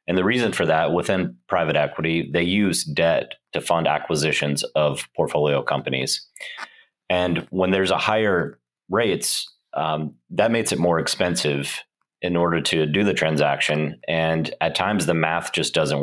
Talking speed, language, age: 155 wpm, English, 30-49